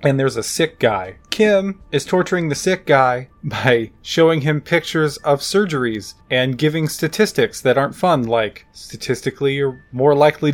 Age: 20-39